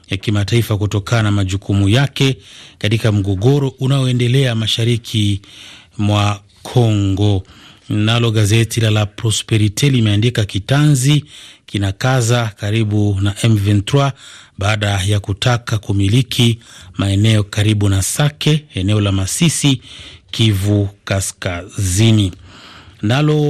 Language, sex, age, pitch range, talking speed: Swahili, male, 30-49, 100-120 Hz, 90 wpm